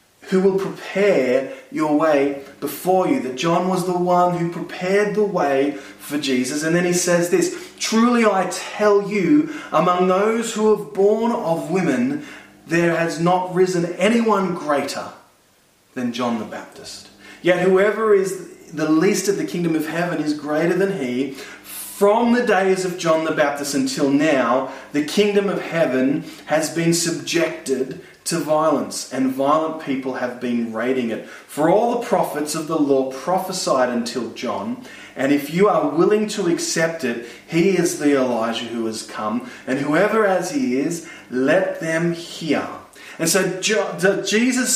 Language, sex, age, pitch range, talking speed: English, male, 20-39, 145-200 Hz, 160 wpm